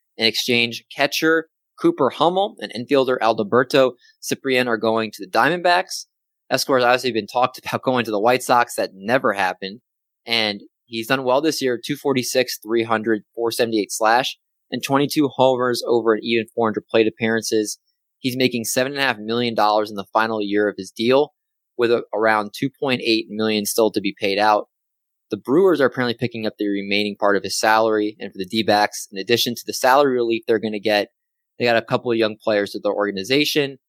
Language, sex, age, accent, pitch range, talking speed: English, male, 20-39, American, 110-130 Hz, 180 wpm